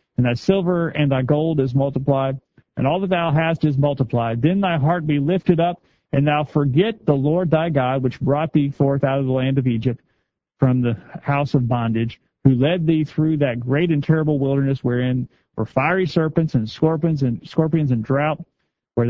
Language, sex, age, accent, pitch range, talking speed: English, male, 40-59, American, 125-155 Hz, 195 wpm